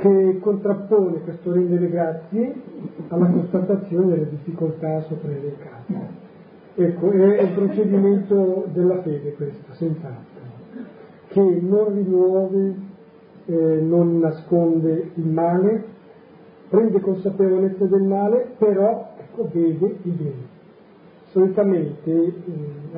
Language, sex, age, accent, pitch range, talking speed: Italian, male, 40-59, native, 155-195 Hz, 100 wpm